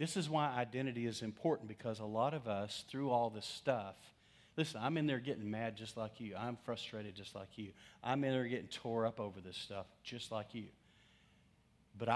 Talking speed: 205 wpm